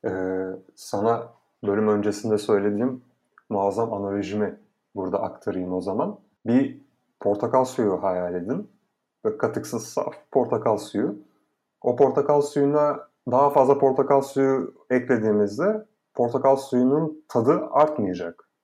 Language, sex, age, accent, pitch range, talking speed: Turkish, male, 30-49, native, 115-150 Hz, 105 wpm